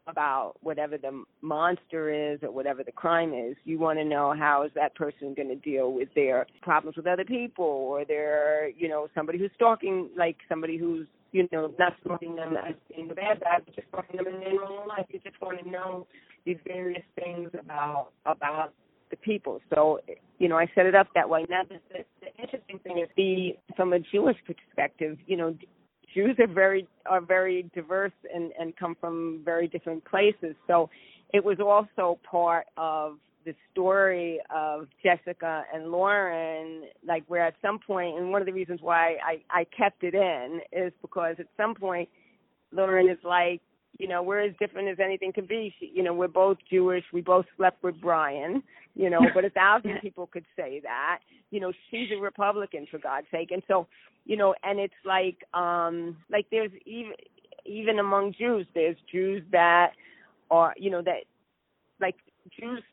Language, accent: English, American